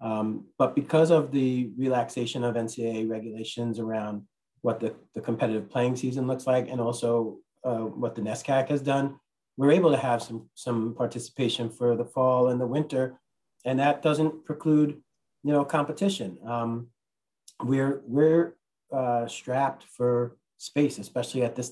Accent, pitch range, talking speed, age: American, 115-130 Hz, 155 wpm, 30-49